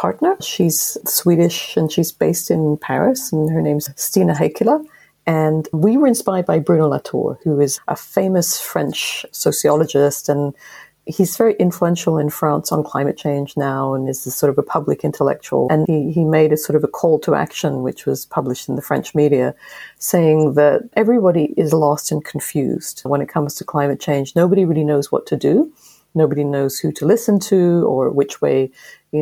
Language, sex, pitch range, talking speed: English, female, 145-175 Hz, 185 wpm